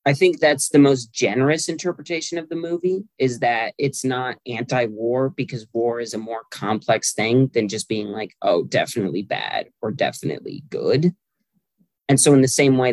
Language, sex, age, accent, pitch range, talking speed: English, male, 20-39, American, 120-140 Hz, 175 wpm